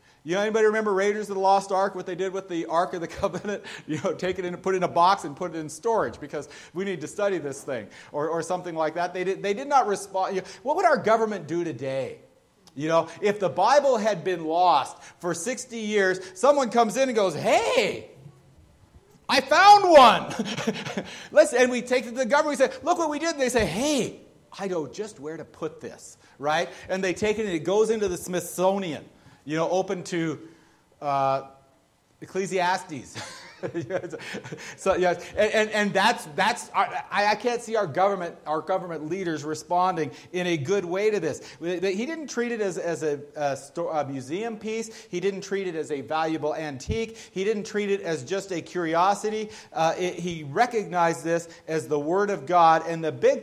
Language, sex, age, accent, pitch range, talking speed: English, male, 40-59, American, 165-215 Hz, 200 wpm